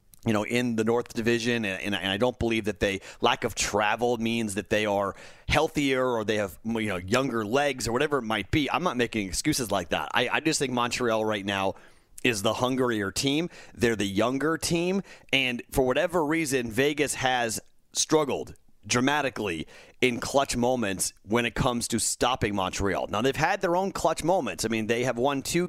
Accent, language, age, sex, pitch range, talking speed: American, English, 30-49, male, 105-145 Hz, 195 wpm